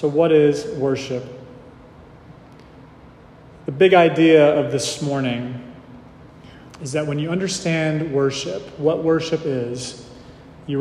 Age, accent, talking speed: 30-49, American, 110 wpm